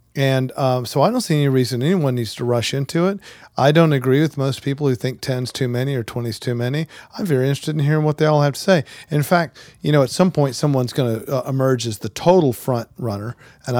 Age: 40-59